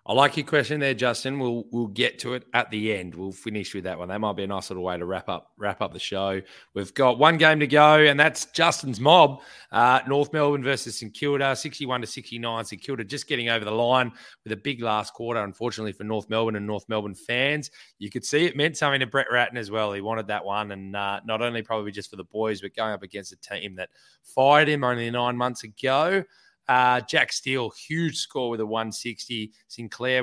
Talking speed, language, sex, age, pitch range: 240 wpm, English, male, 20-39, 105-135 Hz